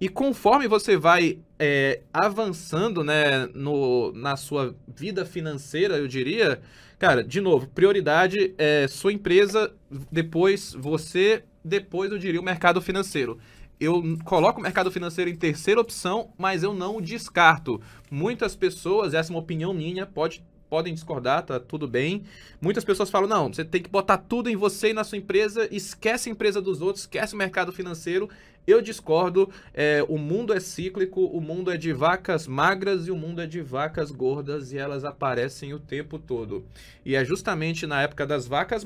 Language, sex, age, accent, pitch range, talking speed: Portuguese, male, 20-39, Brazilian, 140-190 Hz, 165 wpm